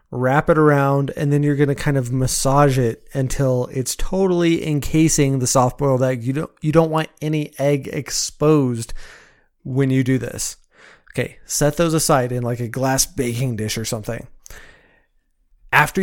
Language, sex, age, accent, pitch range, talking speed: English, male, 30-49, American, 125-145 Hz, 165 wpm